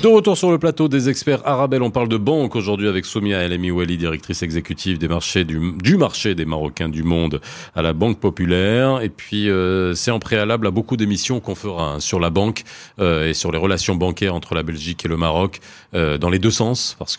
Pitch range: 85-110 Hz